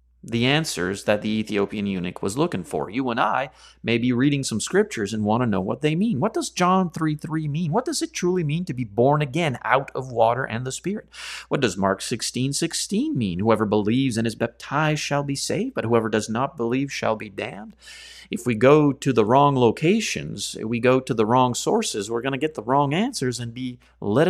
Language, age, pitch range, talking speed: English, 30-49, 110-150 Hz, 225 wpm